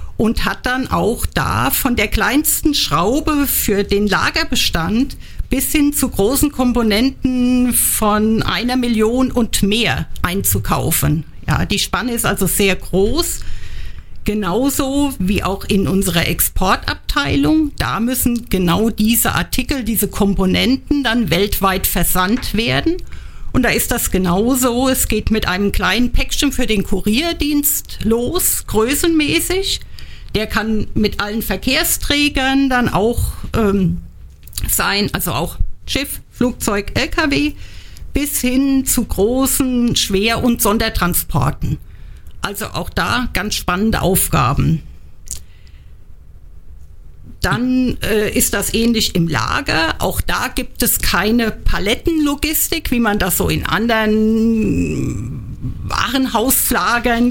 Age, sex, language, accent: 50-69, female, German, German